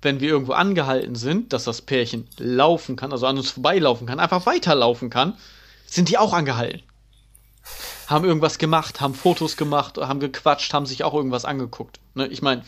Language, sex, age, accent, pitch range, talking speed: German, male, 30-49, German, 130-185 Hz, 175 wpm